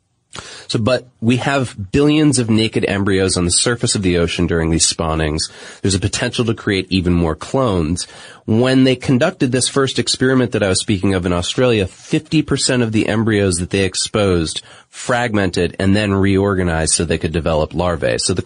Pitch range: 95-125 Hz